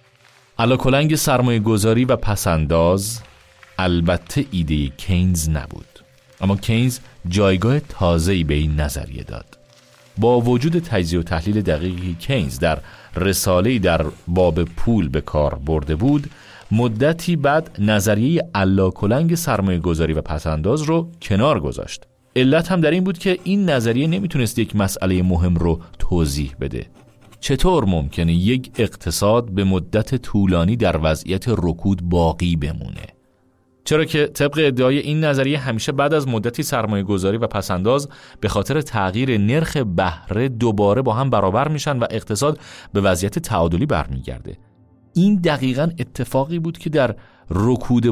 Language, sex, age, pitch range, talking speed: Persian, male, 40-59, 90-135 Hz, 135 wpm